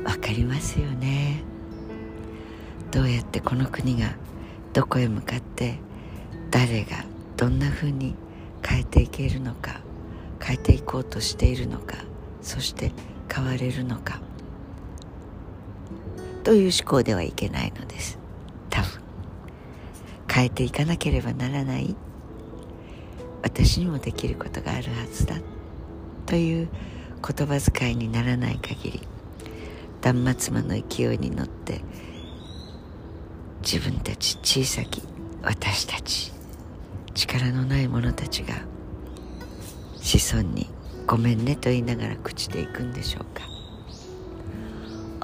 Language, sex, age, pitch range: Japanese, female, 60-79, 85-125 Hz